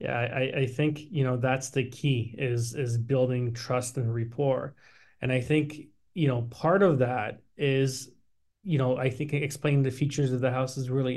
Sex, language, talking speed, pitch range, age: male, English, 195 wpm, 125-150 Hz, 20-39